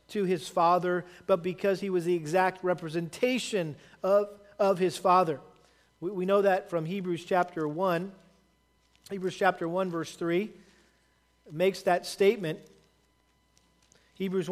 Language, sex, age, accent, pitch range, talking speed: English, male, 40-59, American, 170-205 Hz, 130 wpm